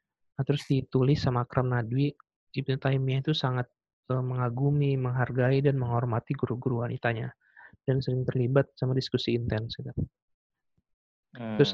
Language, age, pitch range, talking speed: English, 20-39, 120-135 Hz, 110 wpm